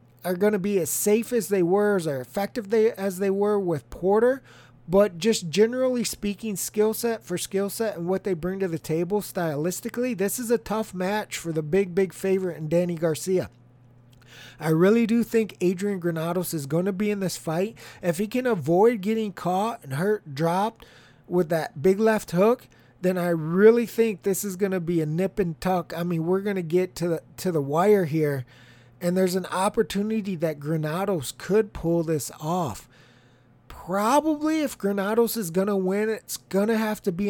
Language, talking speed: English, 195 wpm